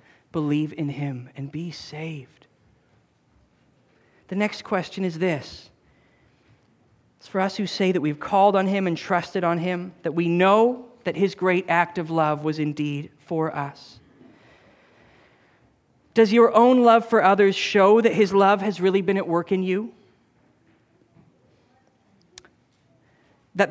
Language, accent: English, American